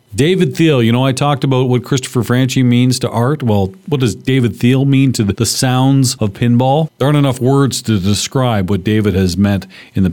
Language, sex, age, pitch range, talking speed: English, male, 40-59, 105-130 Hz, 215 wpm